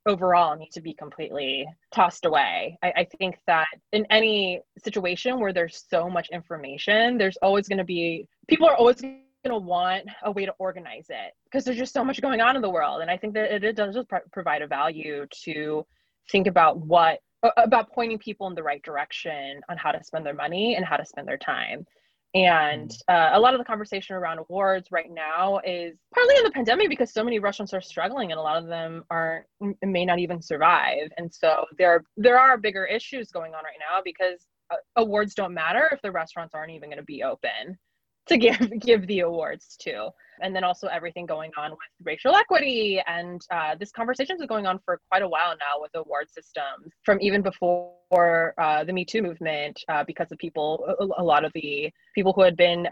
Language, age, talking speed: English, 20-39, 210 wpm